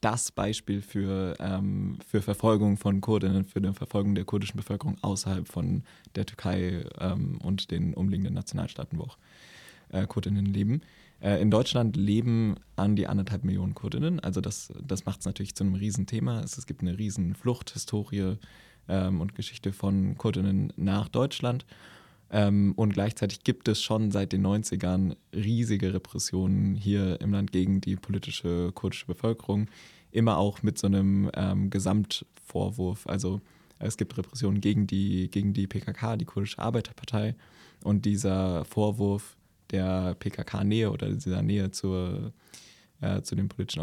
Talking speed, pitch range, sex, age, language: 145 wpm, 95-105 Hz, male, 20-39, German